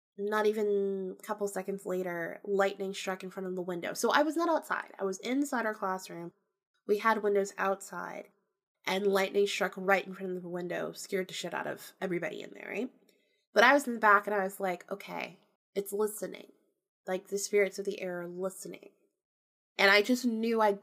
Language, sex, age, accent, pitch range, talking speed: English, female, 20-39, American, 195-230 Hz, 205 wpm